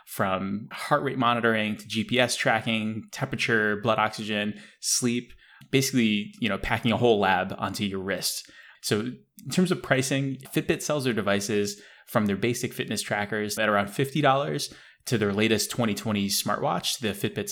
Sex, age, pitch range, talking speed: male, 20-39, 105-135 Hz, 155 wpm